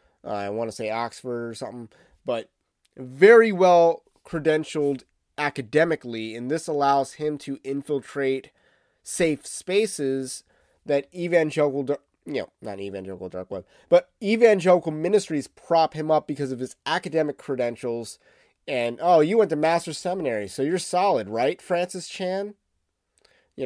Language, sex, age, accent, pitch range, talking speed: English, male, 30-49, American, 130-165 Hz, 135 wpm